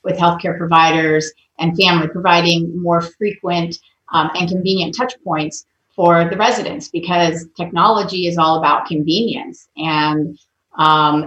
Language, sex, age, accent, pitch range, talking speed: English, female, 30-49, American, 160-190 Hz, 130 wpm